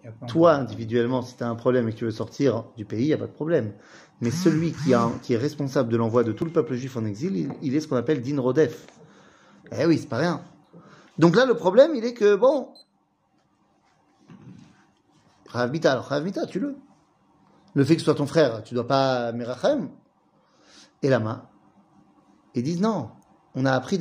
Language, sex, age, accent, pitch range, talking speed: French, male, 30-49, French, 125-170 Hz, 200 wpm